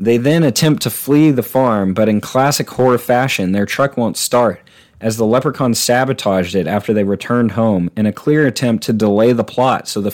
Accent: American